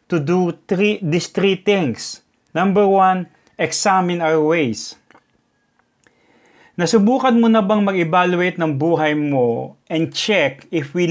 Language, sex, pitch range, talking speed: English, male, 145-200 Hz, 125 wpm